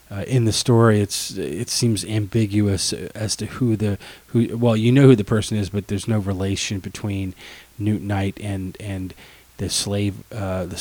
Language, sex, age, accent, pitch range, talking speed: English, male, 30-49, American, 95-110 Hz, 185 wpm